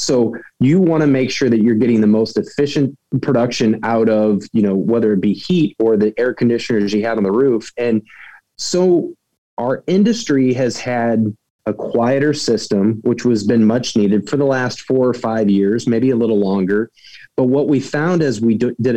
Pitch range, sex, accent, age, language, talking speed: 110-130 Hz, male, American, 30-49, English, 195 wpm